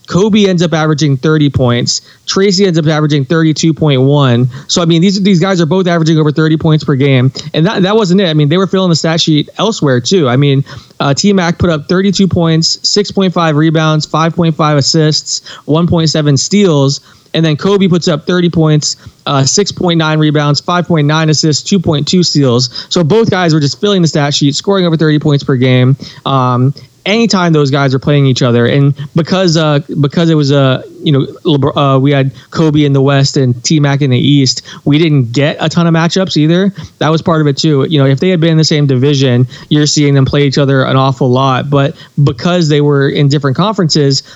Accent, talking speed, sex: American, 210 wpm, male